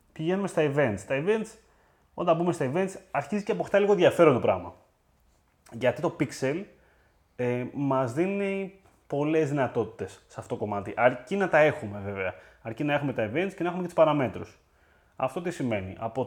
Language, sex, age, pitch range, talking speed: Greek, male, 30-49, 105-160 Hz, 175 wpm